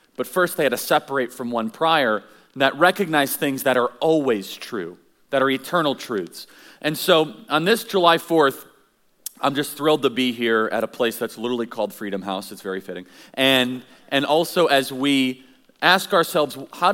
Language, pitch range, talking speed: English, 120-160 Hz, 185 wpm